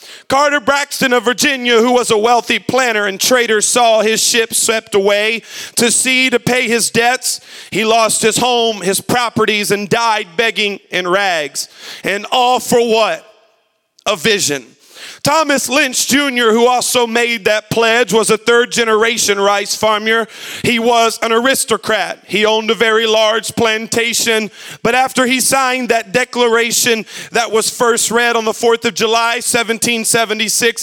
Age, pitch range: 40-59, 220-250 Hz